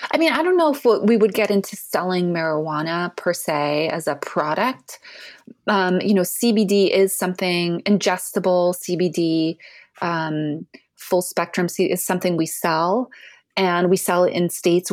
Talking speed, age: 155 wpm, 30-49